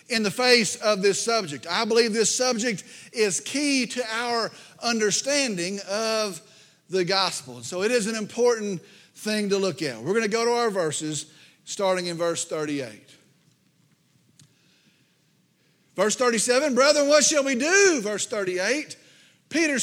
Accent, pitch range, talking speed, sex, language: American, 200-260 Hz, 140 wpm, male, English